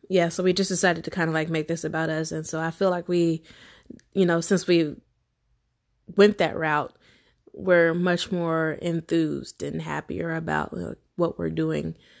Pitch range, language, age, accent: 155-170 Hz, English, 20-39, American